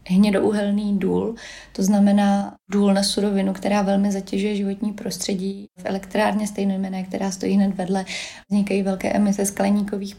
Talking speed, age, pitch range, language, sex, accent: 135 wpm, 20-39, 190-205 Hz, Czech, female, native